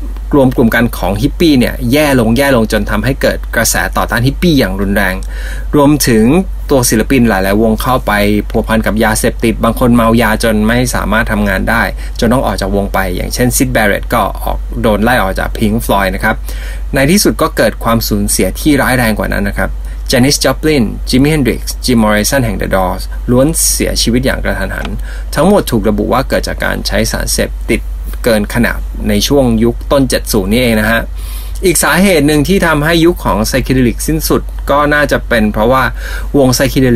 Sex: male